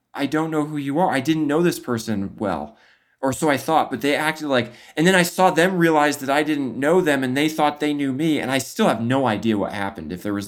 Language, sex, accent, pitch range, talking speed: English, male, American, 105-140 Hz, 275 wpm